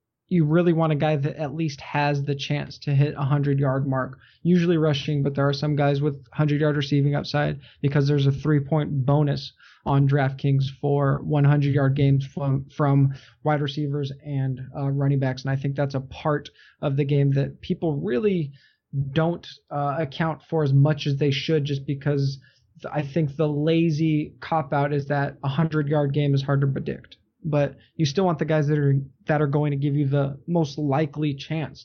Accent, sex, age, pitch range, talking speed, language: American, male, 20-39, 140-160 Hz, 190 wpm, English